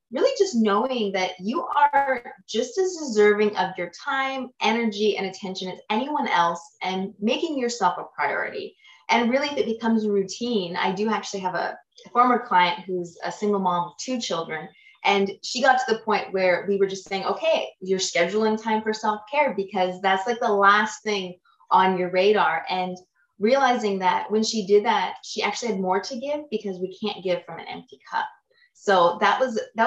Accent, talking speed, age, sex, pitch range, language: American, 190 wpm, 20-39, female, 185-245 Hz, English